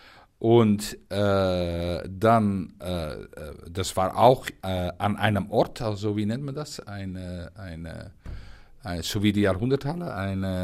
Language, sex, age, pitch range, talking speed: German, male, 50-69, 95-120 Hz, 135 wpm